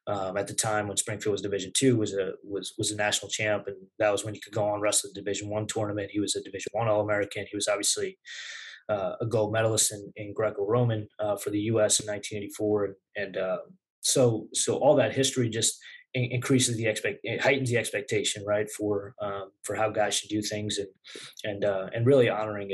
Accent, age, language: American, 20-39, English